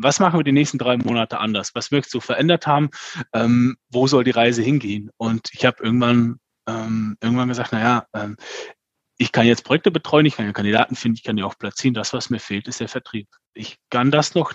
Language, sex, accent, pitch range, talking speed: German, male, German, 120-155 Hz, 225 wpm